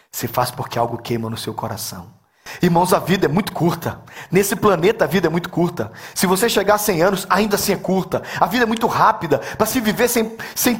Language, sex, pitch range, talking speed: Portuguese, male, 185-235 Hz, 230 wpm